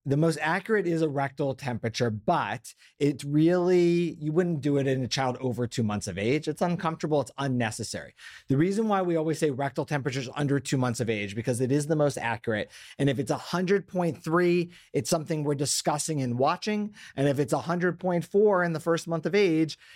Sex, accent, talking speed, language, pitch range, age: male, American, 195 wpm, English, 130-165 Hz, 30-49